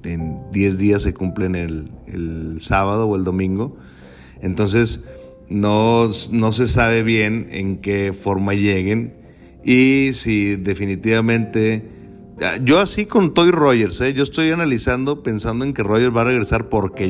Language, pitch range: Spanish, 95-120 Hz